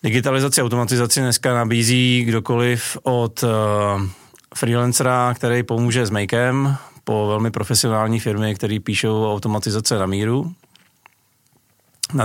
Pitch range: 105-120 Hz